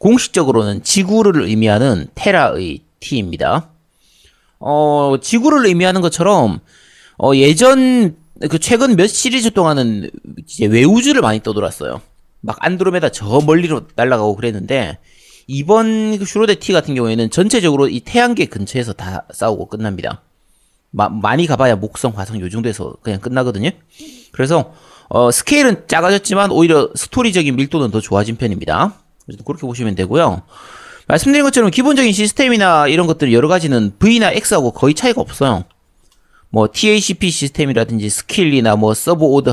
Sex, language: male, English